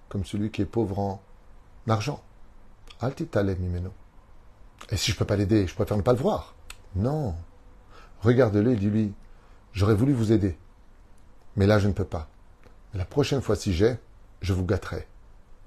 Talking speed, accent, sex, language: 160 wpm, French, male, French